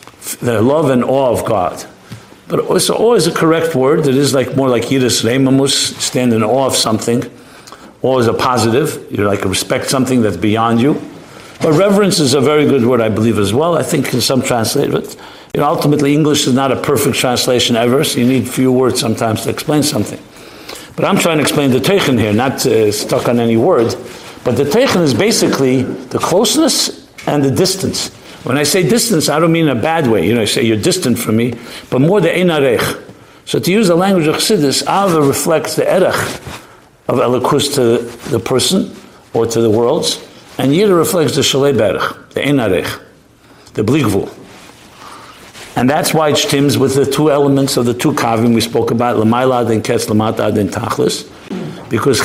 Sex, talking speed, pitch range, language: male, 200 wpm, 115-145 Hz, English